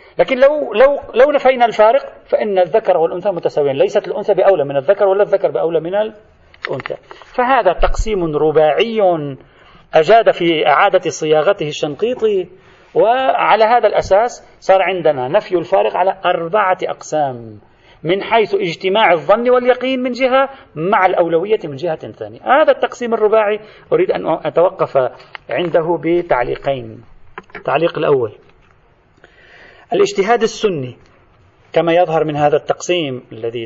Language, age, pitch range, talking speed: Arabic, 40-59, 150-235 Hz, 120 wpm